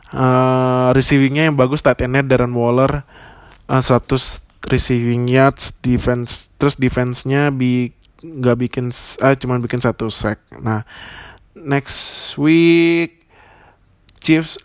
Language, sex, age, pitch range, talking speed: Indonesian, male, 20-39, 115-135 Hz, 105 wpm